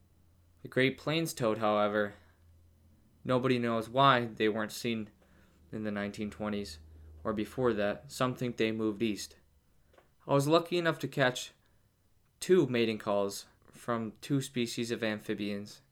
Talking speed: 135 wpm